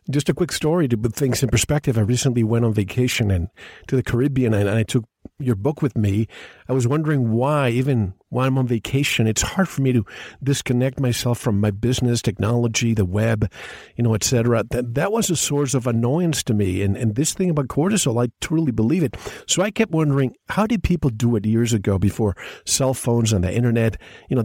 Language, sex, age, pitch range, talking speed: English, male, 50-69, 110-145 Hz, 225 wpm